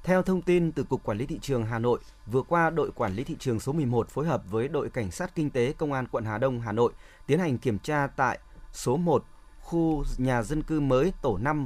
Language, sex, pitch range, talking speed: Vietnamese, male, 120-160 Hz, 250 wpm